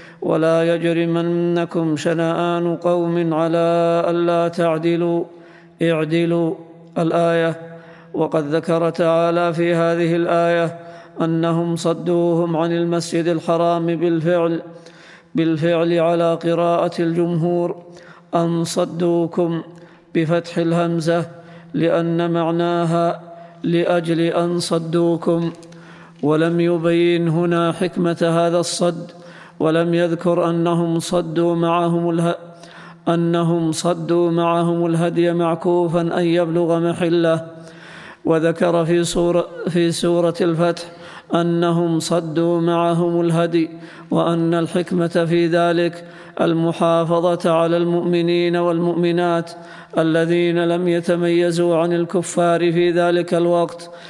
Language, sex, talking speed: Arabic, male, 80 wpm